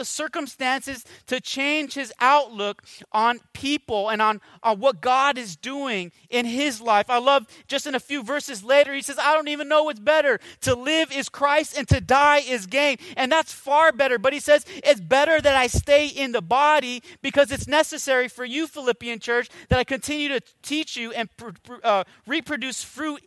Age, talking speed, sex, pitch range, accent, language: 30-49, 190 wpm, male, 230-280 Hz, American, English